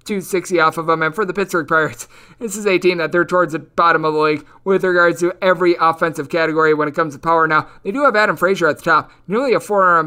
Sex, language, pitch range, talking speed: male, English, 155-190 Hz, 270 wpm